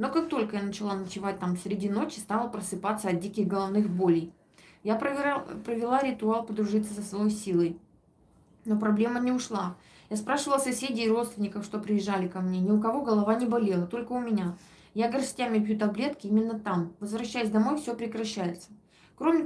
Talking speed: 175 wpm